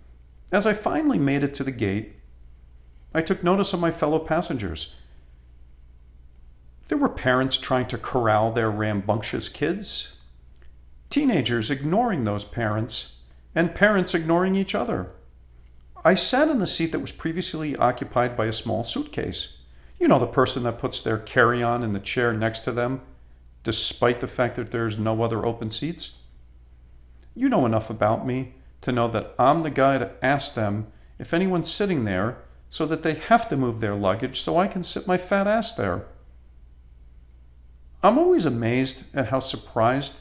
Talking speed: 165 wpm